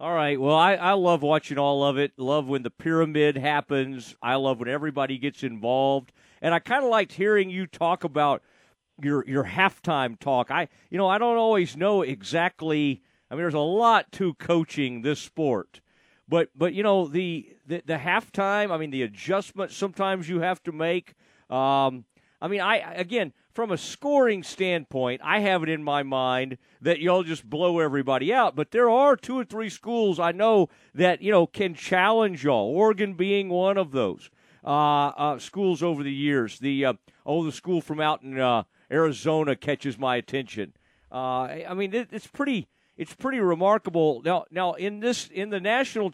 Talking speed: 185 wpm